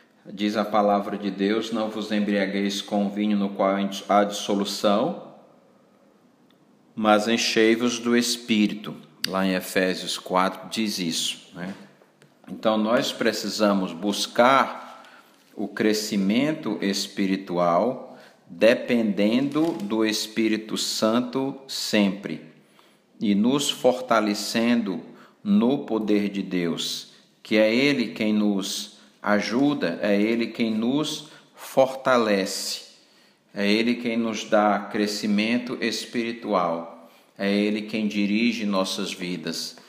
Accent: Brazilian